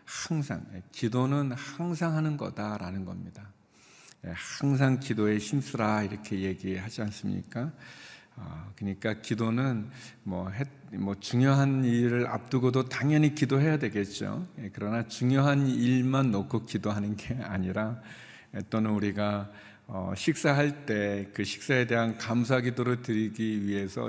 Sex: male